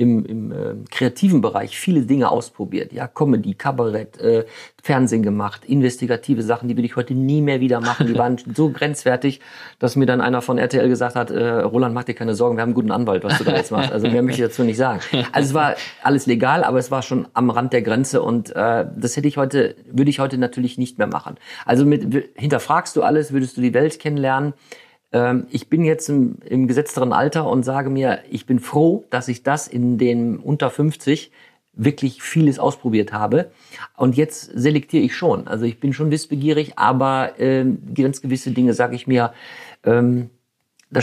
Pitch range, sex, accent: 120-140 Hz, male, German